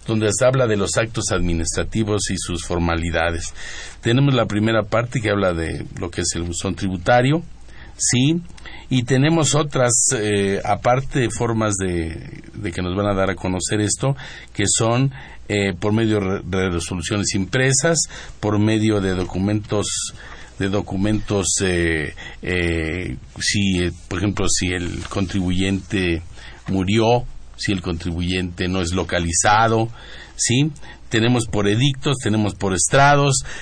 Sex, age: male, 50-69